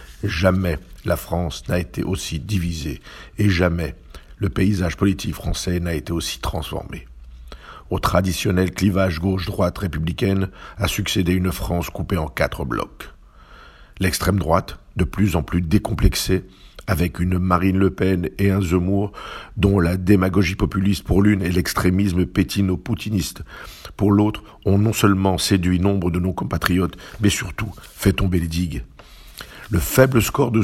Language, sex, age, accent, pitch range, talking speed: French, male, 50-69, French, 85-100 Hz, 145 wpm